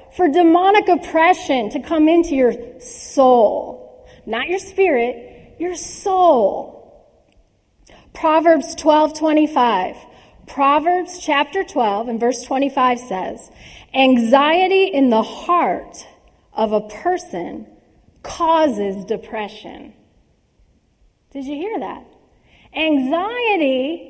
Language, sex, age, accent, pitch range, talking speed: English, female, 30-49, American, 235-345 Hz, 95 wpm